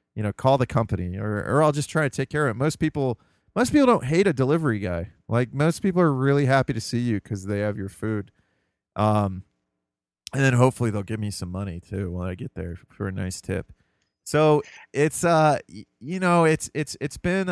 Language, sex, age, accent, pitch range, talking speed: English, male, 30-49, American, 100-130 Hz, 225 wpm